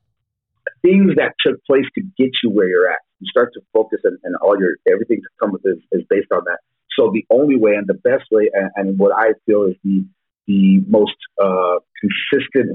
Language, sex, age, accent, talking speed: English, male, 40-59, American, 205 wpm